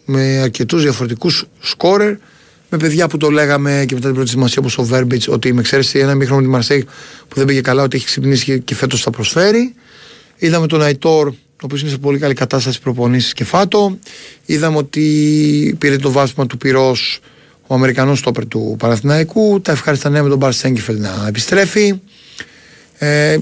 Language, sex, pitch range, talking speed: Greek, male, 125-160 Hz, 175 wpm